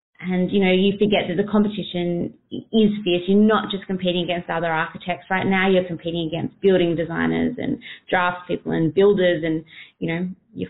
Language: English